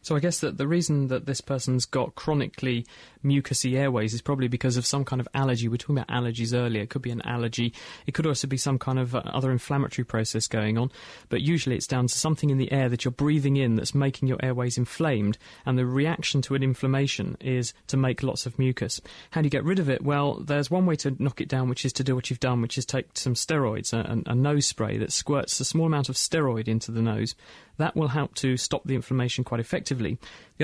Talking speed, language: 245 wpm, English